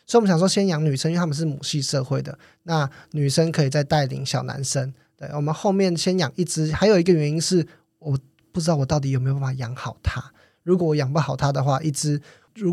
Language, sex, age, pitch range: Chinese, male, 20-39, 135-165 Hz